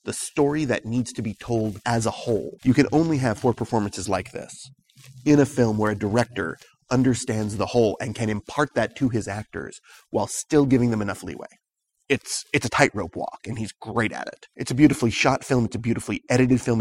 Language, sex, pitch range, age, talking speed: English, male, 105-130 Hz, 30-49, 215 wpm